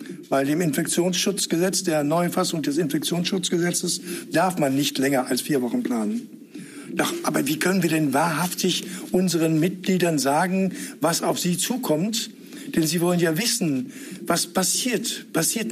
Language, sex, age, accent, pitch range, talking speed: German, male, 60-79, German, 160-215 Hz, 140 wpm